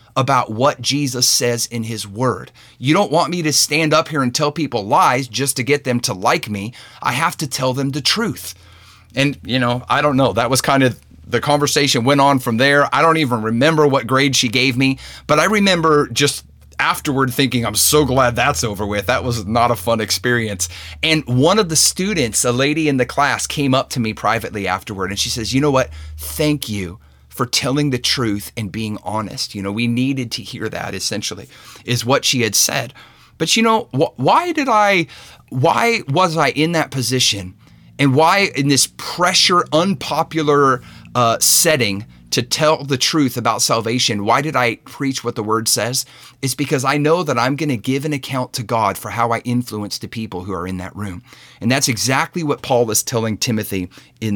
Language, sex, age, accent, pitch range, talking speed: English, male, 30-49, American, 110-145 Hz, 205 wpm